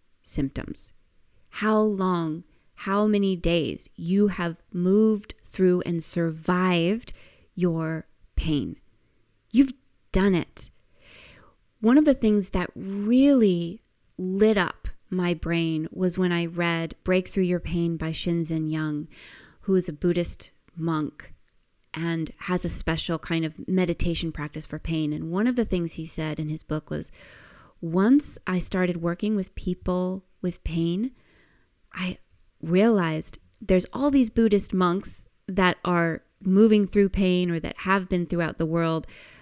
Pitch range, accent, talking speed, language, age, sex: 165-205 Hz, American, 140 wpm, English, 30-49, female